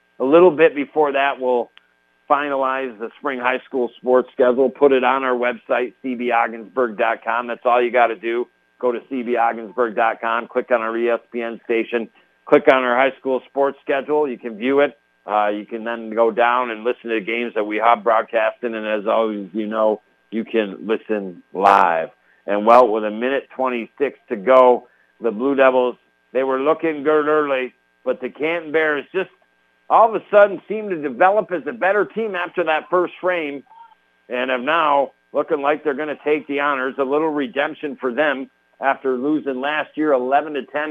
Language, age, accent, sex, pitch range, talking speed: English, 50-69, American, male, 120-155 Hz, 185 wpm